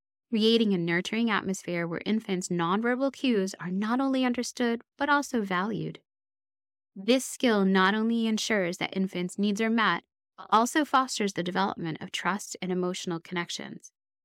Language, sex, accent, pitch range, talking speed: English, female, American, 170-235 Hz, 145 wpm